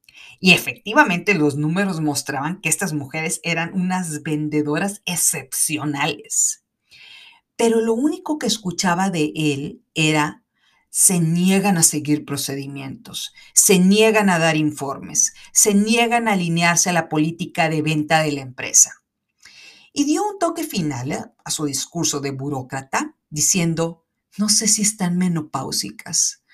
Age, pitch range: 40-59, 145-200 Hz